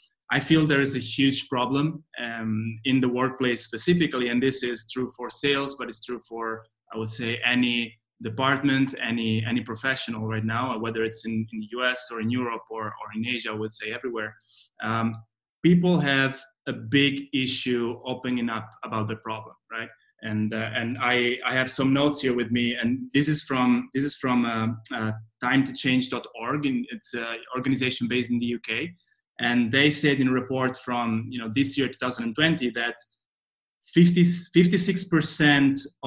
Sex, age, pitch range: male, 20-39, 120-140 Hz